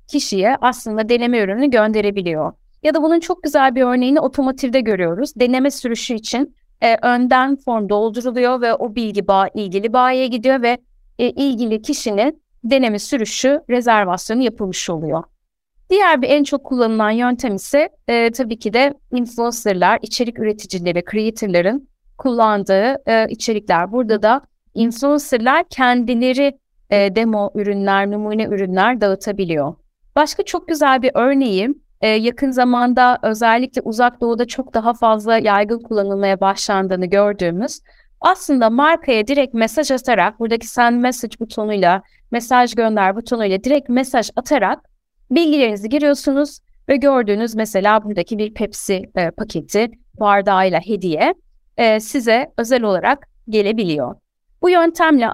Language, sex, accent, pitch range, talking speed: Turkish, female, native, 210-265 Hz, 125 wpm